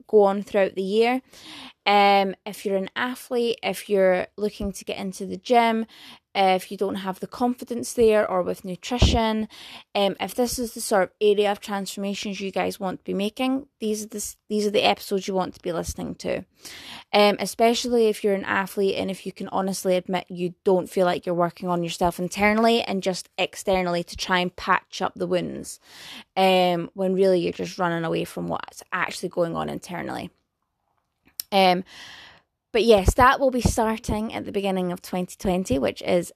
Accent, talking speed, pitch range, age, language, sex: British, 190 wpm, 185-220 Hz, 20-39, English, female